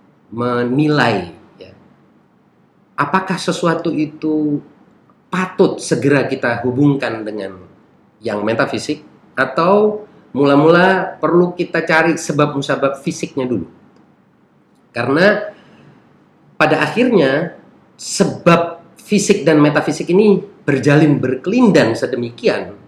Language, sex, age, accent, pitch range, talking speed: Indonesian, male, 40-59, native, 130-180 Hz, 80 wpm